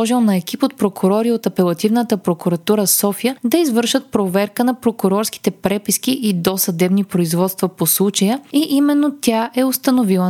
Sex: female